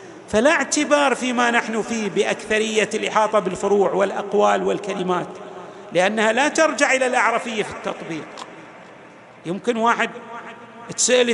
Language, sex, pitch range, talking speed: Arabic, male, 210-275 Hz, 105 wpm